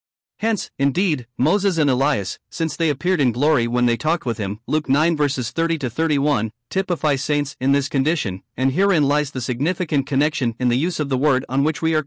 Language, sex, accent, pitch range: English, male, American, 125-170 Hz